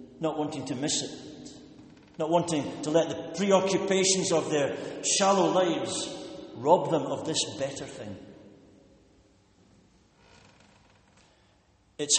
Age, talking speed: 60-79, 110 wpm